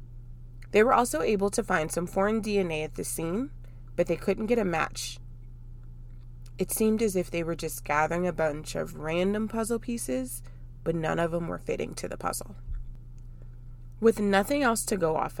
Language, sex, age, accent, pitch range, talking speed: English, female, 20-39, American, 120-200 Hz, 185 wpm